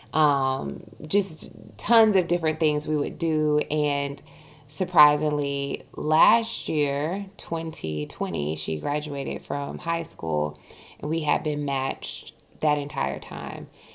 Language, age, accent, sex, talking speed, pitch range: English, 20-39, American, female, 115 wpm, 145-175 Hz